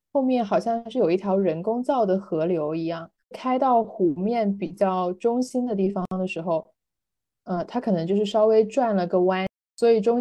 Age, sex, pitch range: 20-39, female, 180-220 Hz